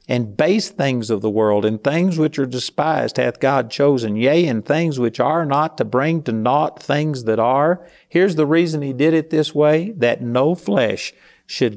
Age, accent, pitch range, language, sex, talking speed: 50-69, American, 115-155 Hz, English, male, 200 wpm